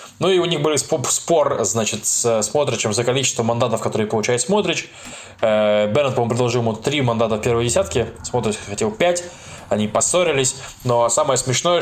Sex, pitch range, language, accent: male, 110-130 Hz, Russian, native